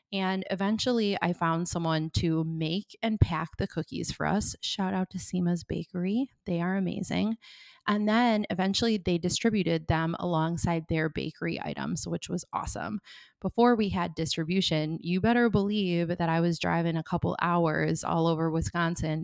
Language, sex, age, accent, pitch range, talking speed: English, female, 20-39, American, 160-200 Hz, 160 wpm